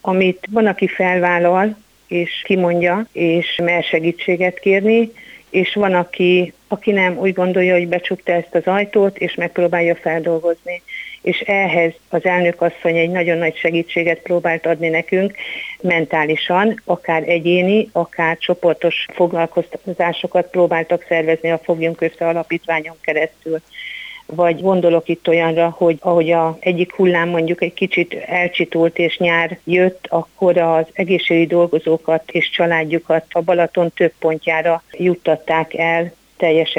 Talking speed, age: 130 wpm, 50-69